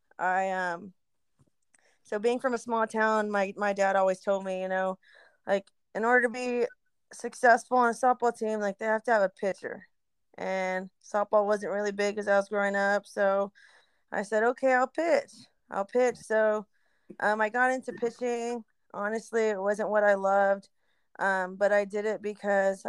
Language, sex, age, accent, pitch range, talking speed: English, female, 20-39, American, 195-220 Hz, 180 wpm